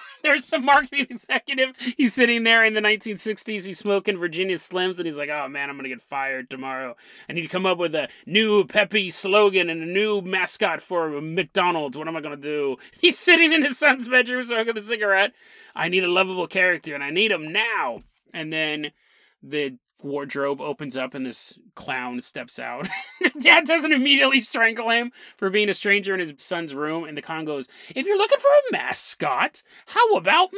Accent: American